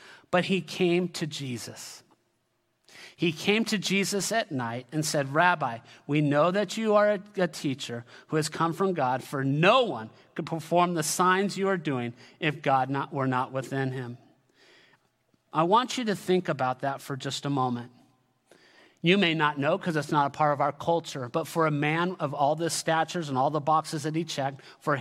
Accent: American